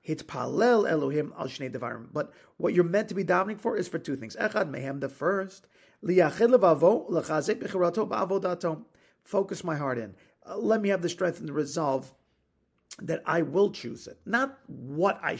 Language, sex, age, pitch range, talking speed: English, male, 40-59, 160-200 Hz, 145 wpm